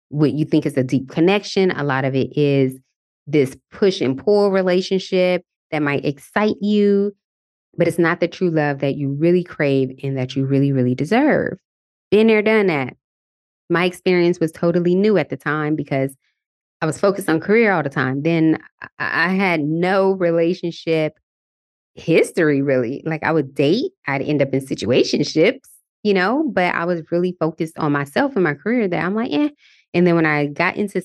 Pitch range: 145-180 Hz